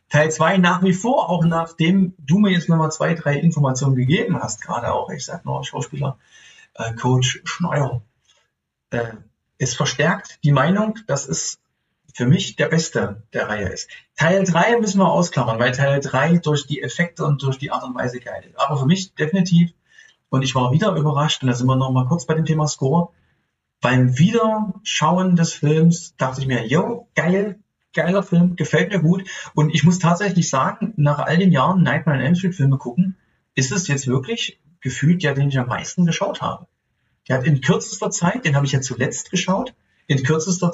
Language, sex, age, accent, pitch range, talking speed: German, male, 40-59, German, 135-185 Hz, 195 wpm